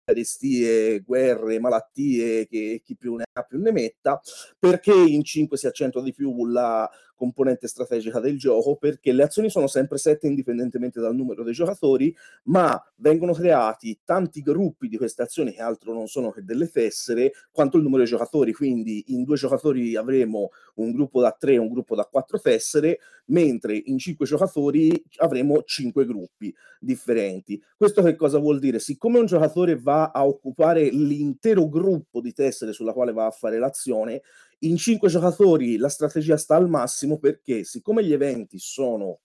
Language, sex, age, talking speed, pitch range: Italian, male, 30-49, 170 wpm, 120-170 Hz